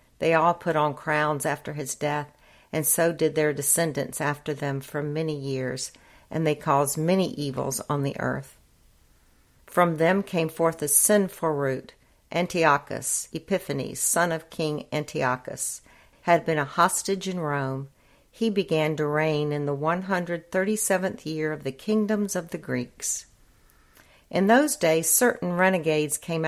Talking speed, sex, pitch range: 145 wpm, female, 145-175 Hz